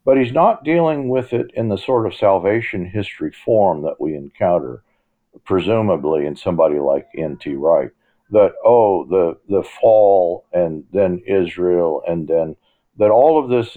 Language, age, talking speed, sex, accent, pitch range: English, 50-69, 155 wpm, male, American, 95-130 Hz